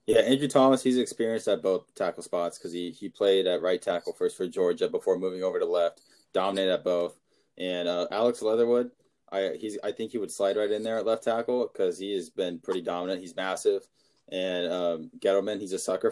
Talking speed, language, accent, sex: 210 wpm, English, American, male